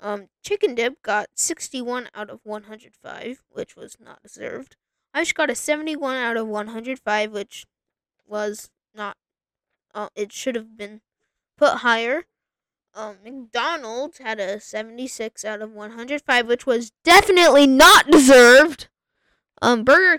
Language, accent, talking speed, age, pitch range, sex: English, American, 135 wpm, 10-29, 220-295 Hz, female